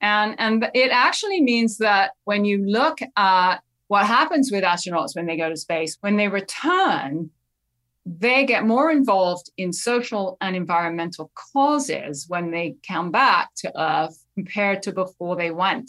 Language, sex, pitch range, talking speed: English, female, 175-235 Hz, 160 wpm